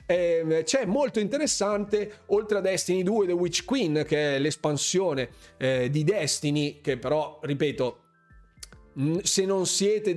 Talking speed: 125 wpm